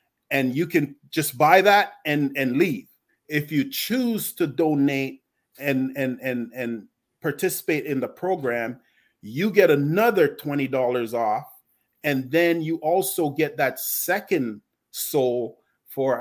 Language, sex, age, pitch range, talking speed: English, male, 30-49, 130-155 Hz, 135 wpm